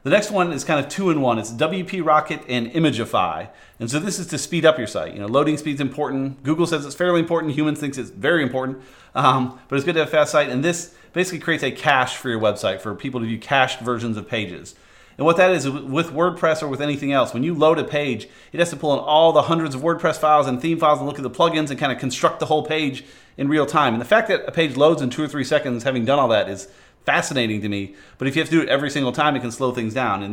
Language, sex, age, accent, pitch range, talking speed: English, male, 30-49, American, 120-155 Hz, 280 wpm